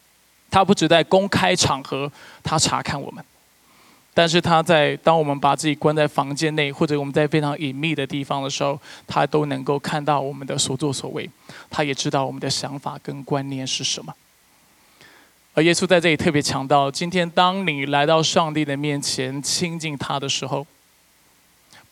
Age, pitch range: 20-39, 140-180 Hz